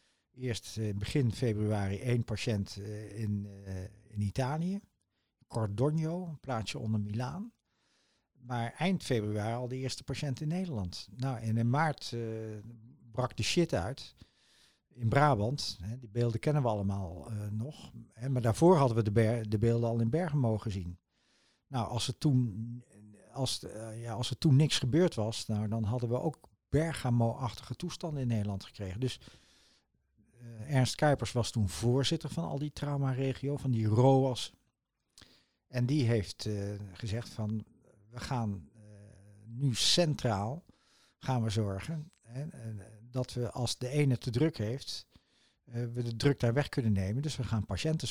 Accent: Dutch